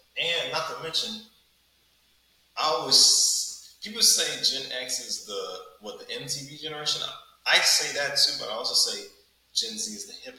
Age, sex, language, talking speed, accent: 20-39, male, English, 175 wpm, American